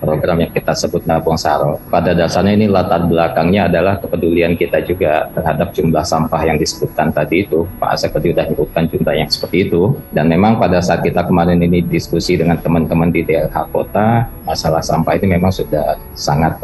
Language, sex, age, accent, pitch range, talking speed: Indonesian, male, 20-39, native, 85-100 Hz, 175 wpm